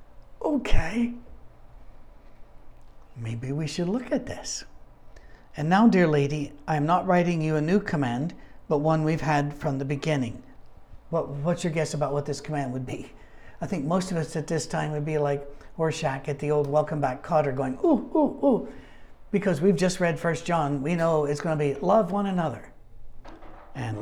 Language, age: English, 60-79